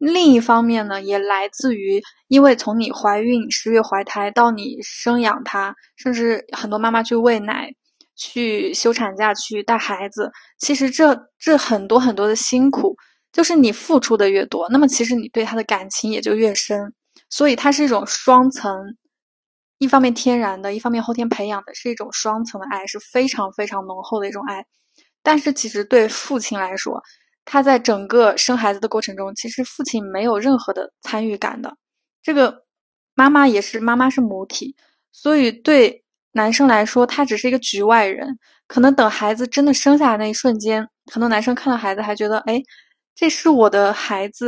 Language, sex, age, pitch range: Chinese, female, 10-29, 210-265 Hz